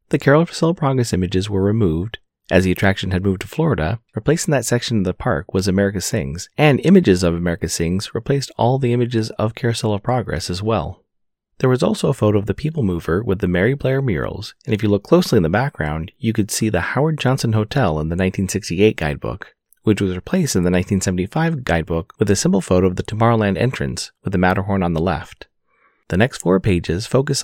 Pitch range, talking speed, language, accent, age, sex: 95-130 Hz, 210 wpm, English, American, 30-49, male